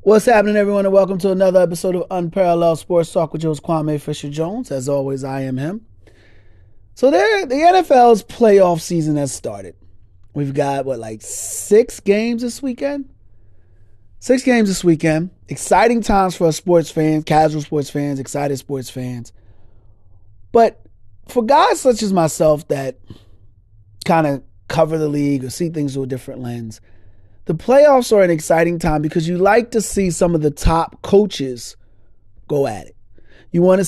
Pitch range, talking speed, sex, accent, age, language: 125-195 Hz, 165 wpm, male, American, 30-49, English